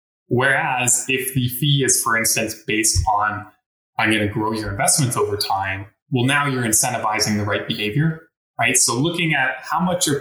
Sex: male